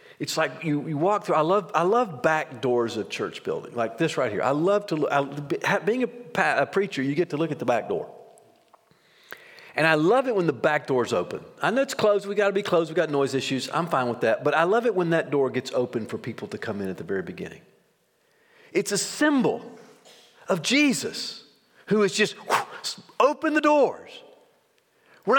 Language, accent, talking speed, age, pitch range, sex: English, American, 215 wpm, 50-69, 150-240 Hz, male